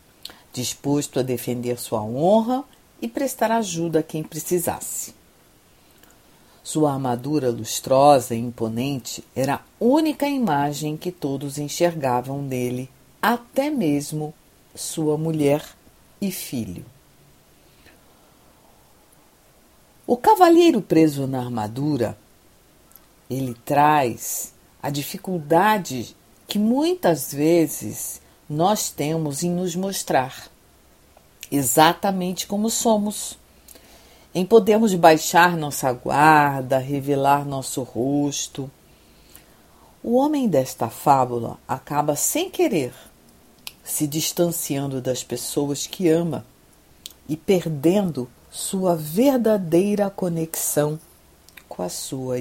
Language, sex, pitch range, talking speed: Portuguese, female, 125-180 Hz, 90 wpm